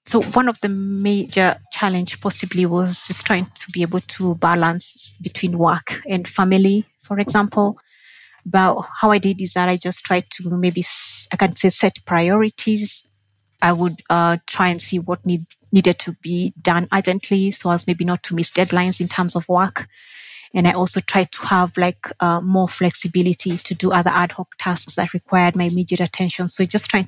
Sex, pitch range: female, 175-190 Hz